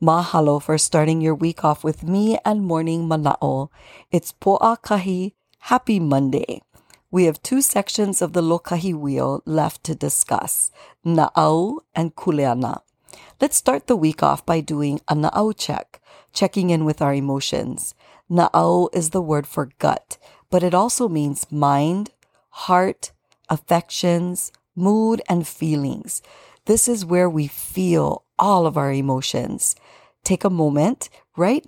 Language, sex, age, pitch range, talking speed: English, female, 40-59, 155-195 Hz, 140 wpm